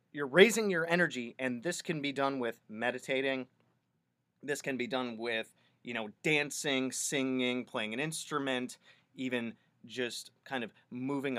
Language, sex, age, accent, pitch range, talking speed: English, male, 30-49, American, 120-150 Hz, 150 wpm